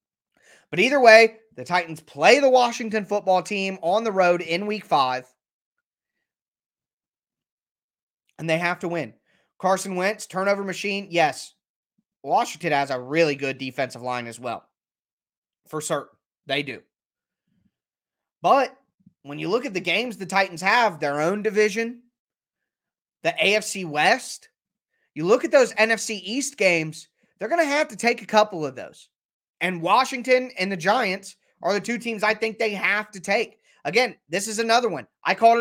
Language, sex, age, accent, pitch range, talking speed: English, male, 20-39, American, 170-220 Hz, 160 wpm